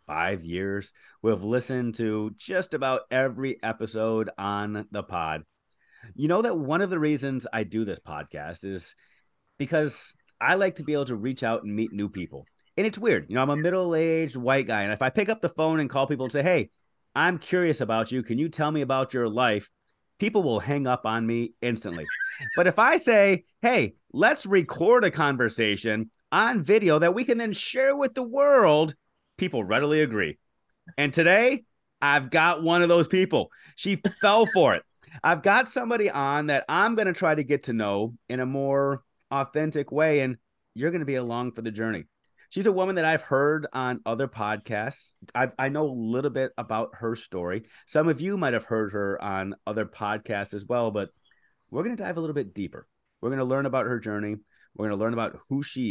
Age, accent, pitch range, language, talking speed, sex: 30-49, American, 110-165 Hz, English, 205 wpm, male